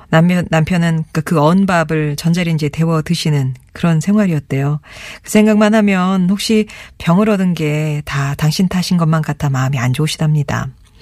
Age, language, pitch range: 40-59, Korean, 145-195 Hz